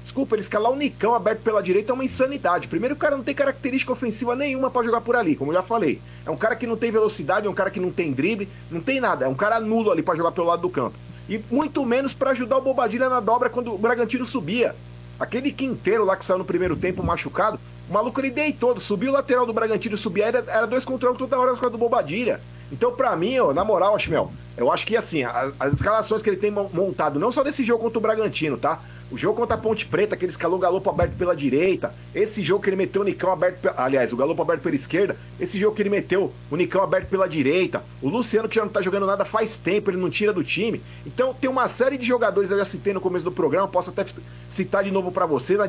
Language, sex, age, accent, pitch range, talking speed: Portuguese, male, 40-59, Brazilian, 180-235 Hz, 260 wpm